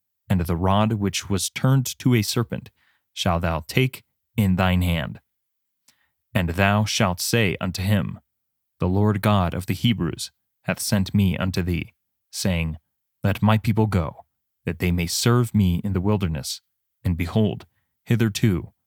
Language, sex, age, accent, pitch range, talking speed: English, male, 30-49, American, 90-115 Hz, 155 wpm